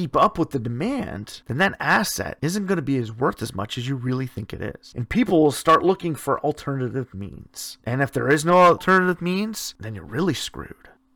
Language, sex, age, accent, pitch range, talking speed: English, male, 30-49, American, 135-225 Hz, 220 wpm